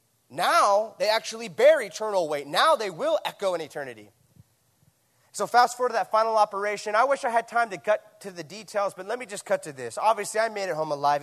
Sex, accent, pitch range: male, American, 155-210 Hz